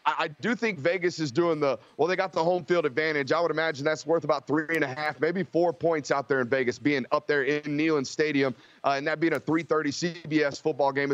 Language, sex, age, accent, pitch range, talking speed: English, male, 30-49, American, 145-170 Hz, 250 wpm